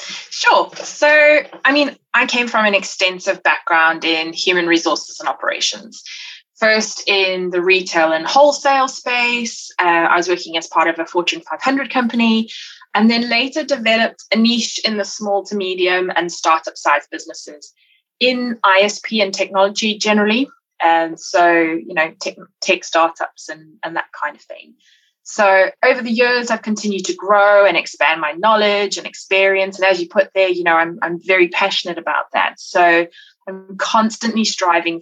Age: 20-39